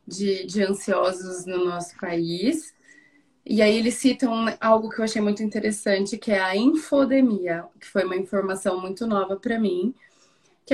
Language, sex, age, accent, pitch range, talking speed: Portuguese, female, 20-39, Brazilian, 195-245 Hz, 160 wpm